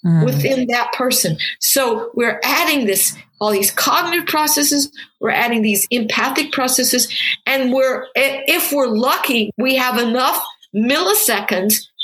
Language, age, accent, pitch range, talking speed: English, 50-69, American, 210-275 Hz, 125 wpm